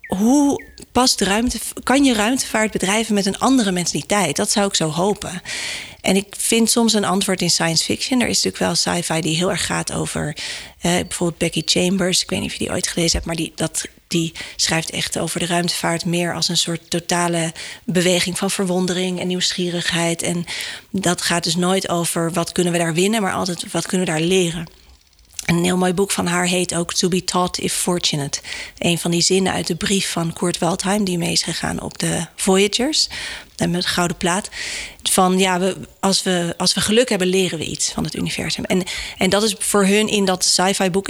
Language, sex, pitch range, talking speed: Dutch, female, 170-205 Hz, 210 wpm